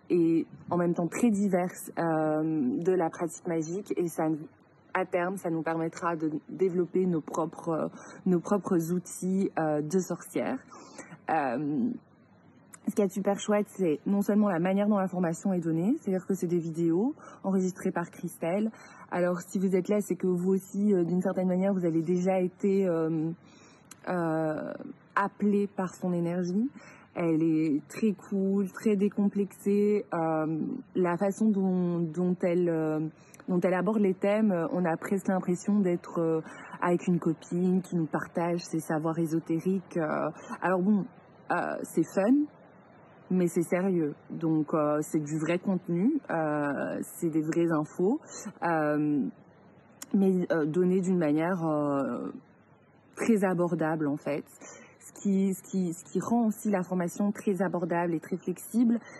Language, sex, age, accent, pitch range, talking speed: French, female, 20-39, French, 165-200 Hz, 155 wpm